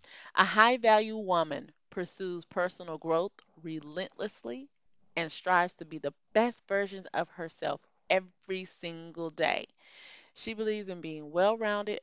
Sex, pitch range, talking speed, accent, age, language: female, 170-230 Hz, 120 wpm, American, 30-49, English